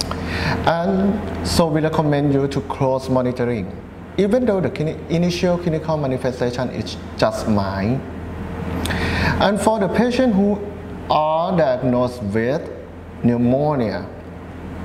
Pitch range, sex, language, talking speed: 115-165 Hz, male, English, 110 wpm